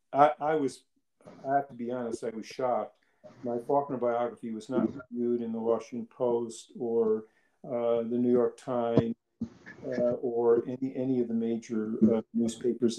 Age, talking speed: 50-69, 155 wpm